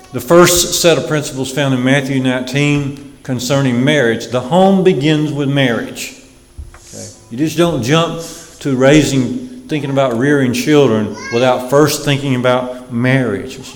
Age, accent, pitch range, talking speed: 50-69, American, 110-135 Hz, 140 wpm